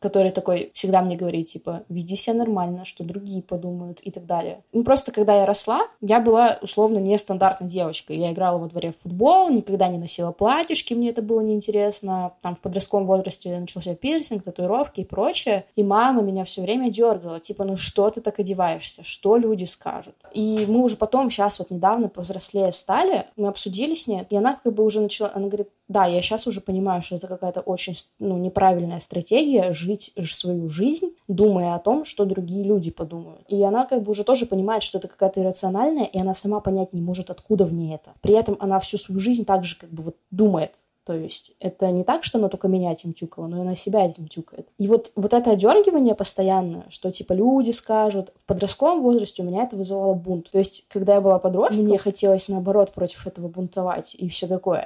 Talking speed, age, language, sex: 210 wpm, 20-39, Russian, female